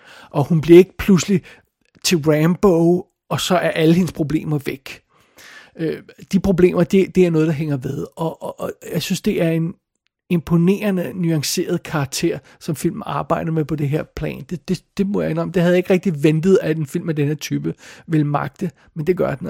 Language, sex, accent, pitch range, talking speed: Danish, male, native, 160-185 Hz, 200 wpm